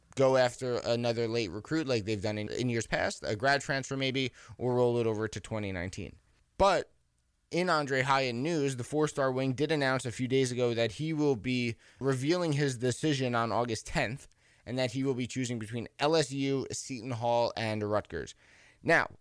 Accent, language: American, English